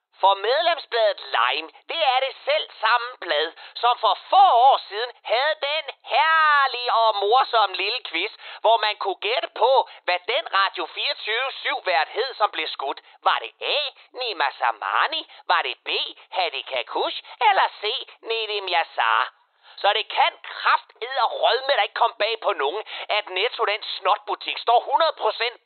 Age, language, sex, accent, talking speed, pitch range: 30-49, Danish, male, native, 150 wpm, 215-290 Hz